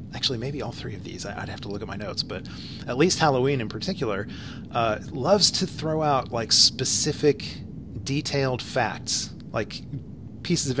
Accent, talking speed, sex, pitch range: American, 170 wpm, male, 105-135 Hz